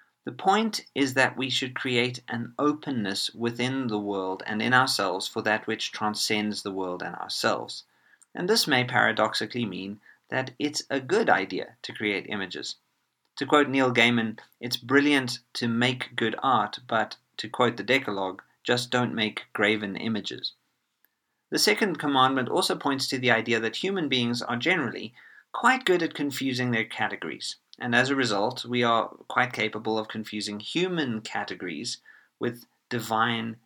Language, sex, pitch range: English, male, 110-135 Hz